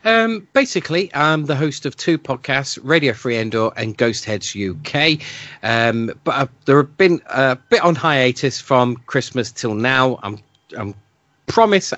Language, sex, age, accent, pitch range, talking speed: English, male, 40-59, British, 110-155 Hz, 170 wpm